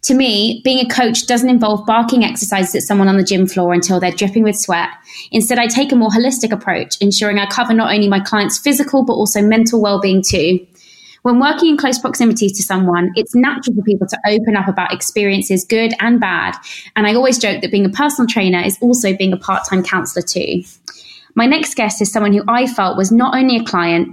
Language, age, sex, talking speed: English, 20-39, female, 220 wpm